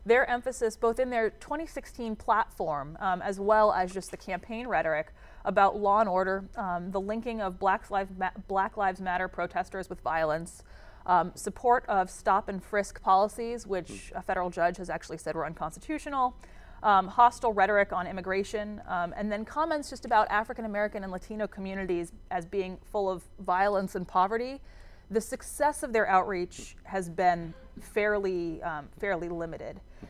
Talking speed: 160 wpm